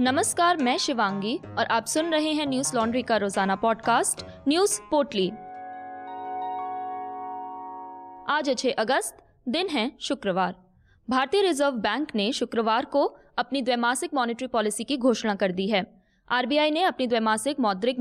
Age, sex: 20-39, female